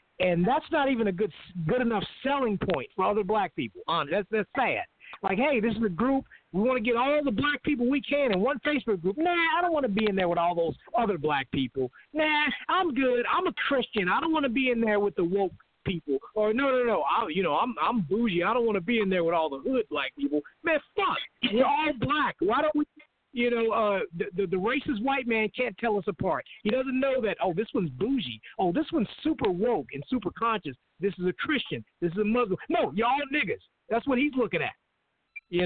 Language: English